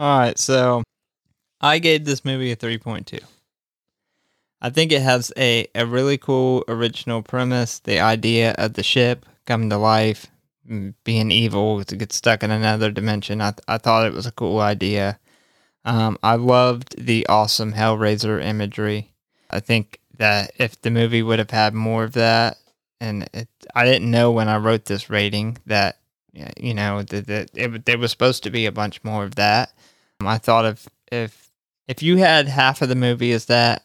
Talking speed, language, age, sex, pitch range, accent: 185 wpm, English, 20-39, male, 105-125 Hz, American